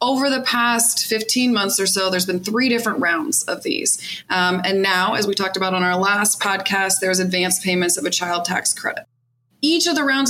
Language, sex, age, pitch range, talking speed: English, female, 20-39, 190-240 Hz, 215 wpm